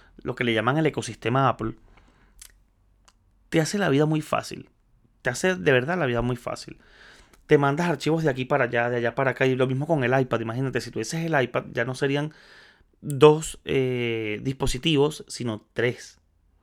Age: 30-49